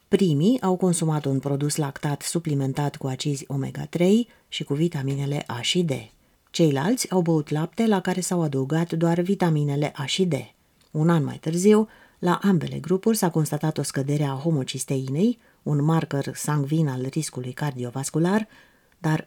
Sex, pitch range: female, 135-175 Hz